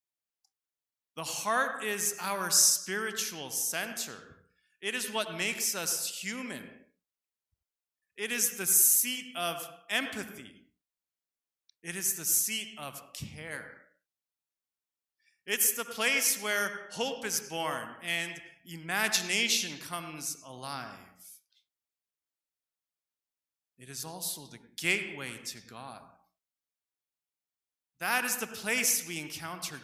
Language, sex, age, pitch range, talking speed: English, male, 20-39, 160-220 Hz, 95 wpm